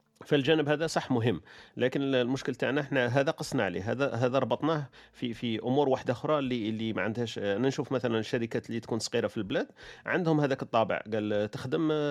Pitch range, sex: 105-140 Hz, male